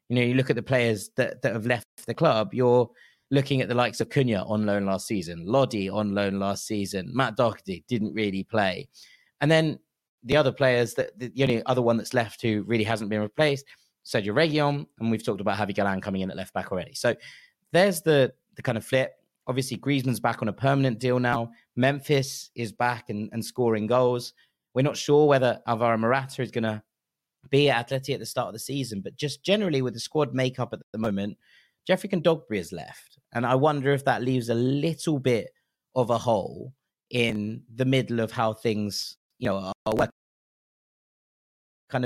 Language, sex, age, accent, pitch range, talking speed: English, male, 30-49, British, 110-135 Hz, 205 wpm